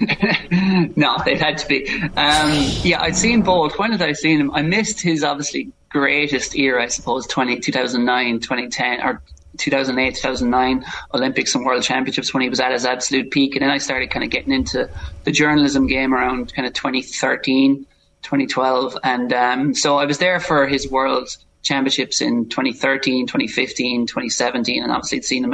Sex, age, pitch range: male, 20-39, 125-150 Hz